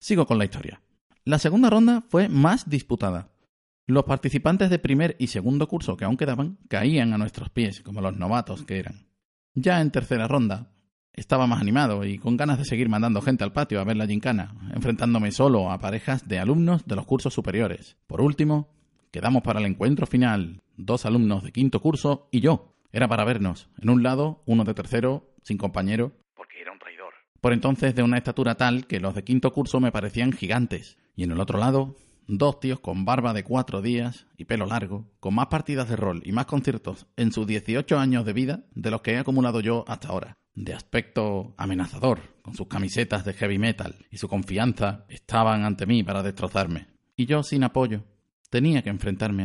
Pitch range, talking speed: 100-135 Hz, 195 wpm